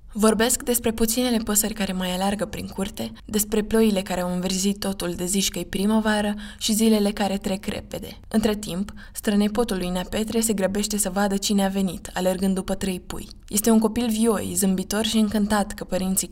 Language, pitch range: Romanian, 190-220 Hz